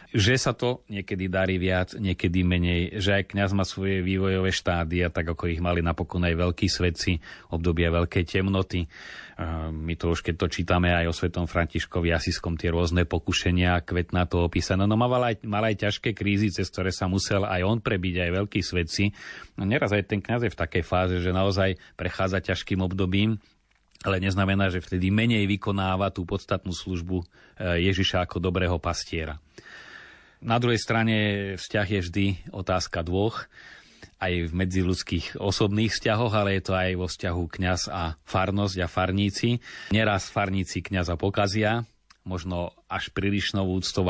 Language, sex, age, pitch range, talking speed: Slovak, male, 30-49, 90-100 Hz, 165 wpm